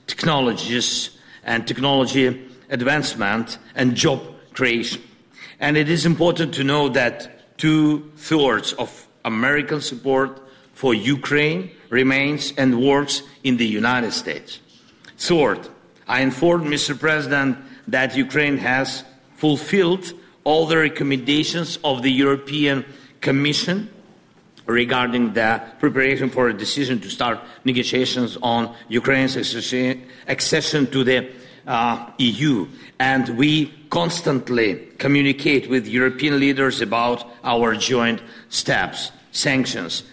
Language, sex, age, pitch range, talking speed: English, male, 50-69, 125-145 Hz, 105 wpm